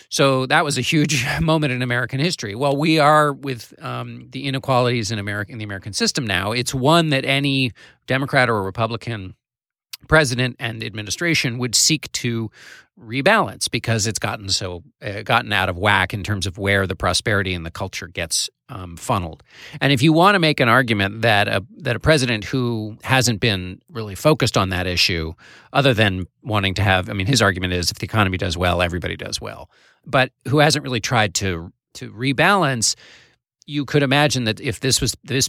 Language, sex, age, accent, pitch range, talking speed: English, male, 40-59, American, 95-130 Hz, 195 wpm